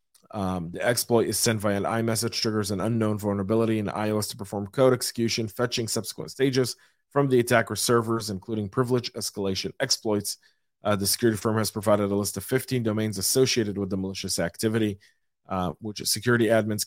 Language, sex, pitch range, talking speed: English, male, 100-120 Hz, 175 wpm